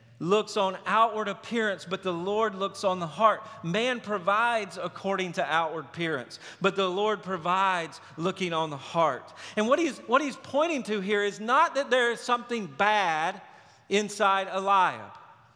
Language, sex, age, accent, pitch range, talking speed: English, male, 40-59, American, 195-255 Hz, 160 wpm